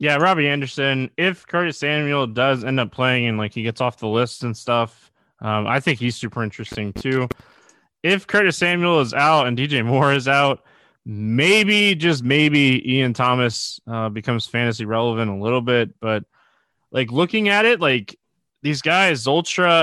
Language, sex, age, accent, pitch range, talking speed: English, male, 20-39, American, 110-145 Hz, 175 wpm